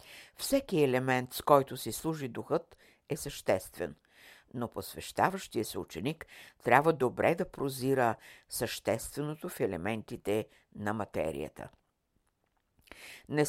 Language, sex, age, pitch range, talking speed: Bulgarian, female, 60-79, 115-160 Hz, 100 wpm